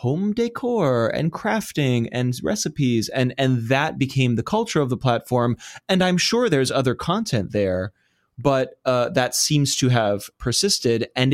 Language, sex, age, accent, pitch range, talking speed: English, male, 20-39, American, 110-140 Hz, 160 wpm